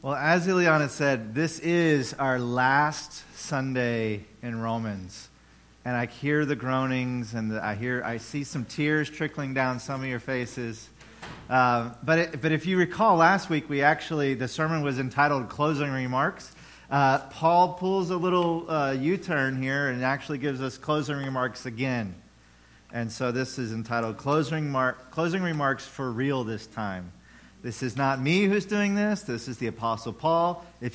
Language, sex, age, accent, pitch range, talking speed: English, male, 40-59, American, 125-160 Hz, 170 wpm